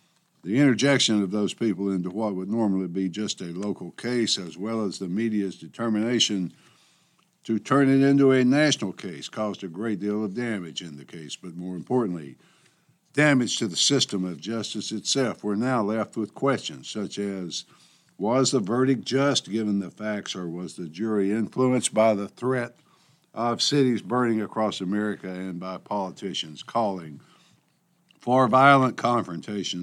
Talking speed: 160 wpm